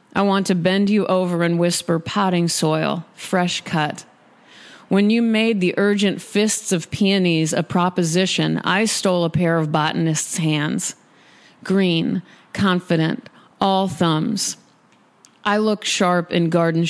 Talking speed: 135 wpm